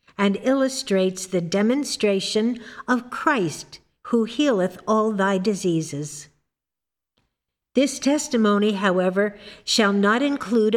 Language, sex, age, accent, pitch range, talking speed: English, female, 50-69, American, 185-235 Hz, 95 wpm